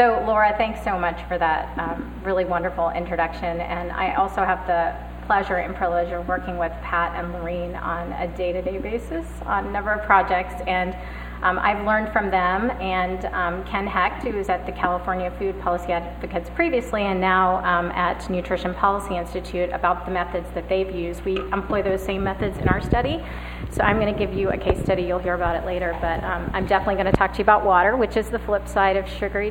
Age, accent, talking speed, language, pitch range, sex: 30-49, American, 215 wpm, English, 180-210 Hz, female